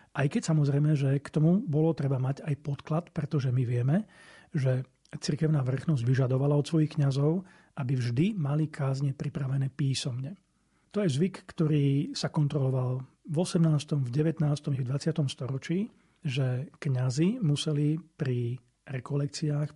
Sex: male